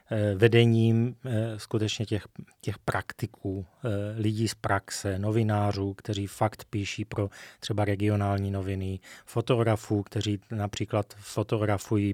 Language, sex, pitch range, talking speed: Slovak, male, 105-120 Hz, 100 wpm